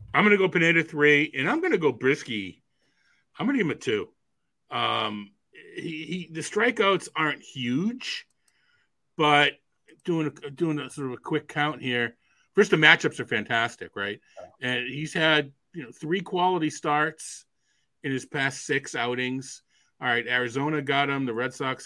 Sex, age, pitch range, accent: male, 40-59, 125-155 Hz, American